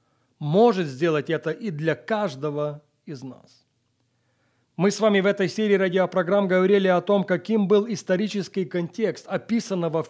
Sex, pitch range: male, 160-220 Hz